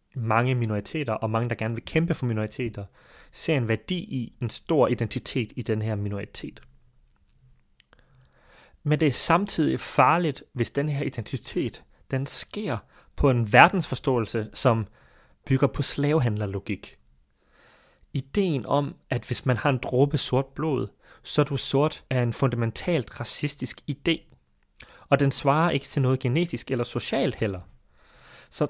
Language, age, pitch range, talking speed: Danish, 30-49, 115-145 Hz, 145 wpm